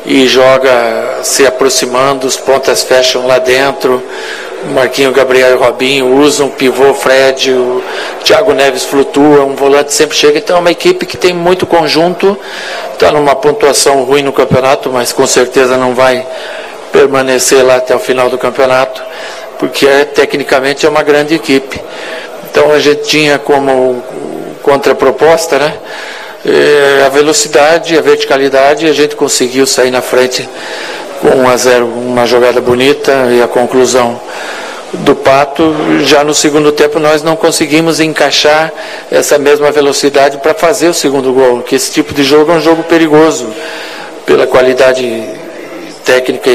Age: 60-79